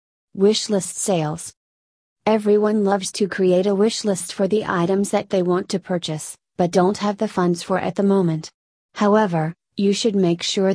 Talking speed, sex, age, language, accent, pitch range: 165 wpm, female, 30-49, English, American, 175-200 Hz